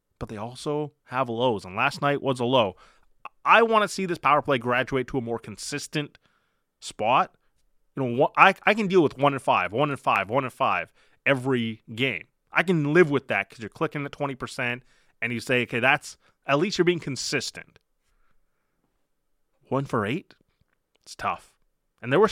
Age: 30-49